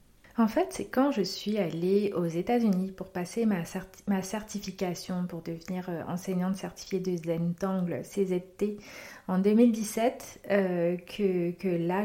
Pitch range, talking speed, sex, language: 175-200 Hz, 150 wpm, female, French